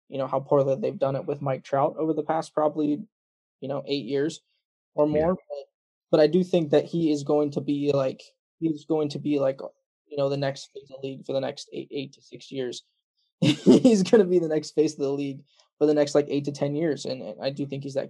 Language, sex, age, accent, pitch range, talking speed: English, male, 20-39, American, 140-155 Hz, 260 wpm